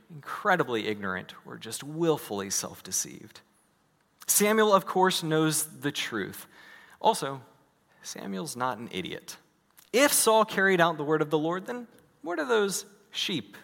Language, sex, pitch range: English, male, 130-195 Hz